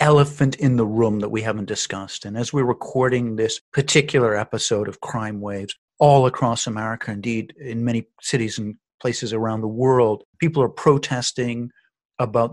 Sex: male